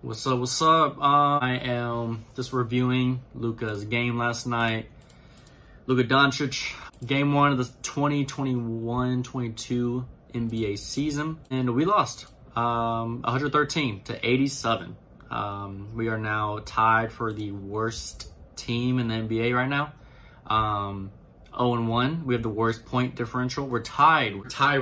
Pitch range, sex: 115-140 Hz, male